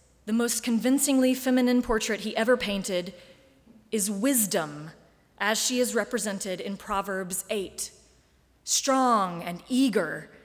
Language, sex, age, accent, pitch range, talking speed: English, female, 30-49, American, 205-250 Hz, 115 wpm